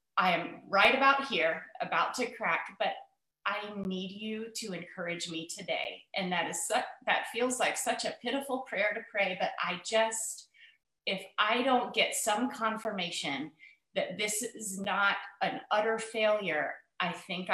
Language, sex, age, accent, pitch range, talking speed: English, female, 30-49, American, 175-225 Hz, 160 wpm